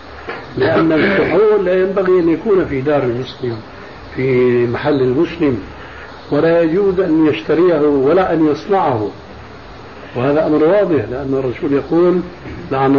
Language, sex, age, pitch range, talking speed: Arabic, male, 60-79, 135-170 Hz, 120 wpm